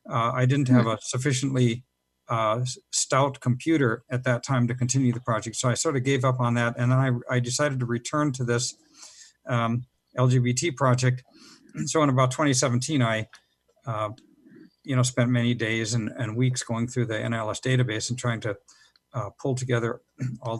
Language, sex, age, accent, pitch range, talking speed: English, male, 50-69, American, 120-145 Hz, 180 wpm